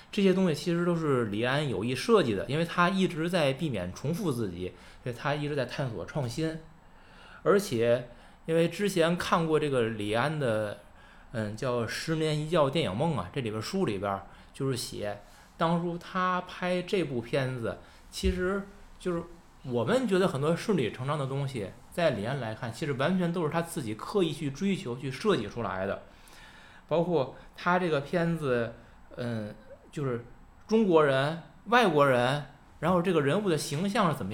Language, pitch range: Chinese, 125-180 Hz